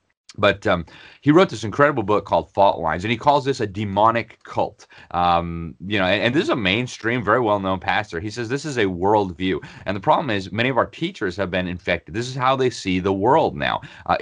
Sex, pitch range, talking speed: male, 95-110 Hz, 230 wpm